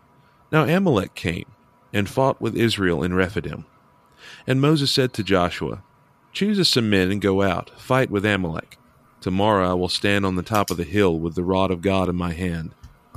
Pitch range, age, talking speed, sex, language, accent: 95-125 Hz, 40-59, 185 wpm, male, English, American